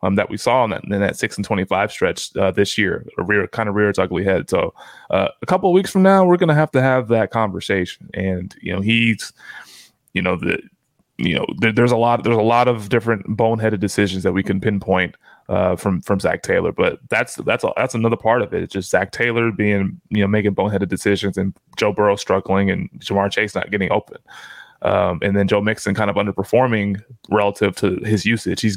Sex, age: male, 20-39